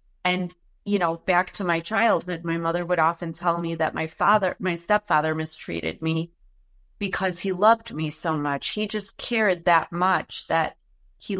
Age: 30-49